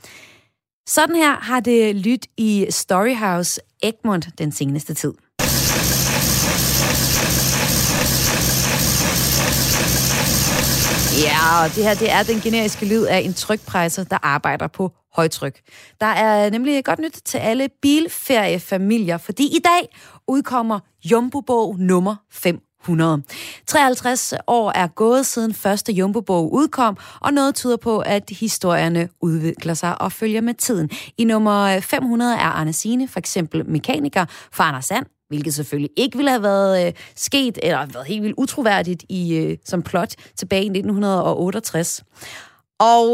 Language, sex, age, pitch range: Danish, female, 30-49, 170-230 Hz